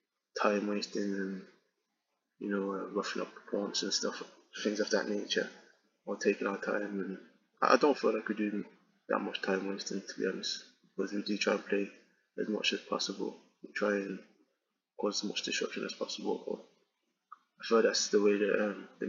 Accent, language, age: British, English, 20-39